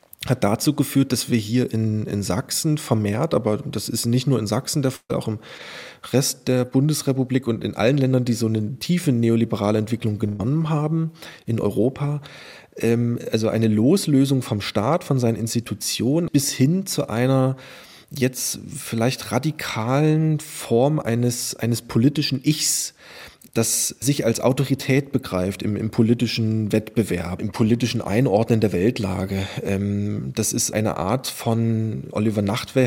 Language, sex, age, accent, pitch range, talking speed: German, male, 30-49, German, 105-130 Hz, 150 wpm